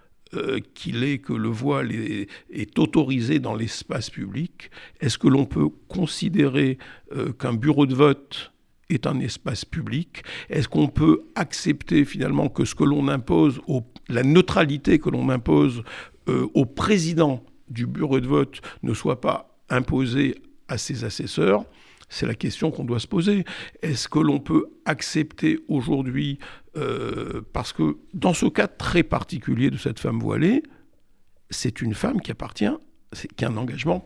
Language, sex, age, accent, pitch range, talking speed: French, male, 60-79, French, 125-160 Hz, 155 wpm